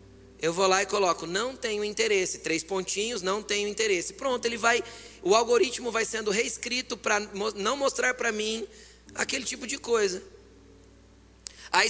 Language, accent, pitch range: Portuguese, Brazilian, 165-275 Hz